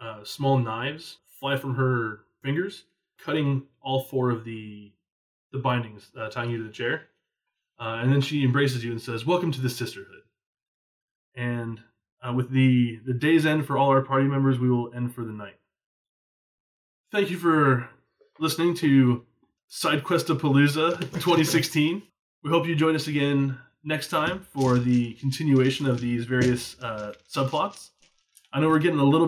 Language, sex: English, male